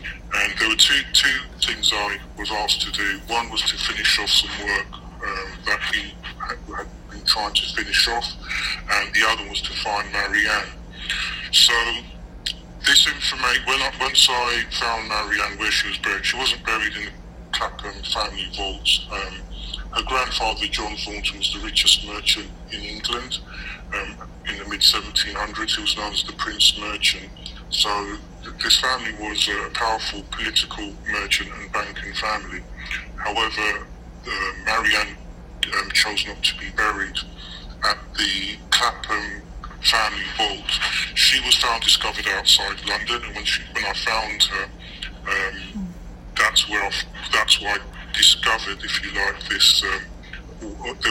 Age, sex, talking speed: 40-59, female, 155 wpm